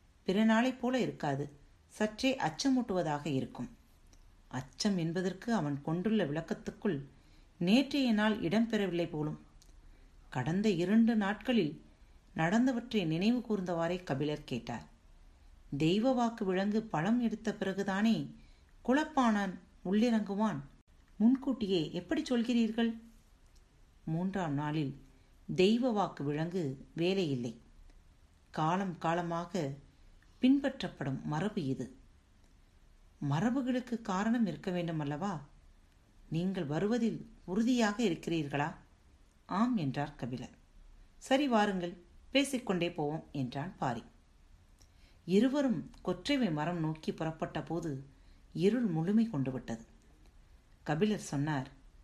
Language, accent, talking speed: Tamil, native, 85 wpm